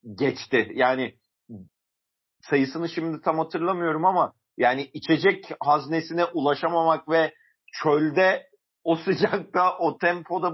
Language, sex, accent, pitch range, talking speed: Turkish, male, native, 140-170 Hz, 95 wpm